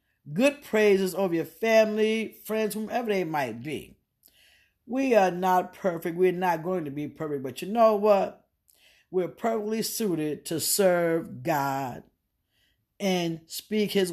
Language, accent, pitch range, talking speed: English, American, 160-210 Hz, 140 wpm